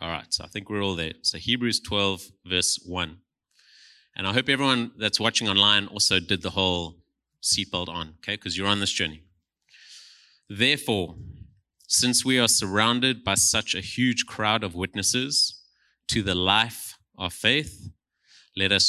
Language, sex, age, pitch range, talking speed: English, male, 30-49, 95-115 Hz, 160 wpm